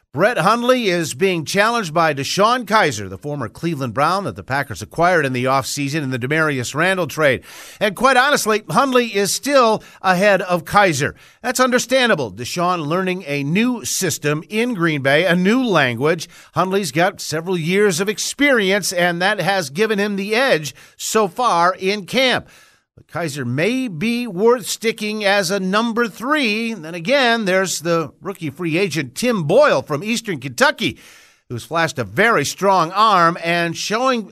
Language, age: English, 50-69